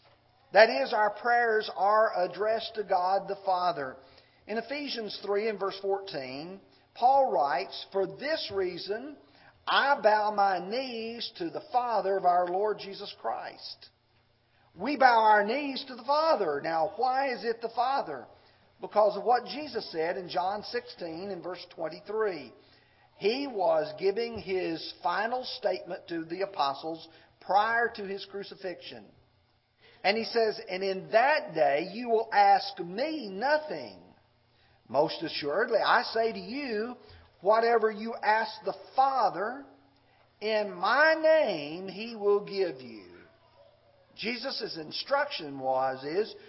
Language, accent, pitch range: English, American, 170-240 Hz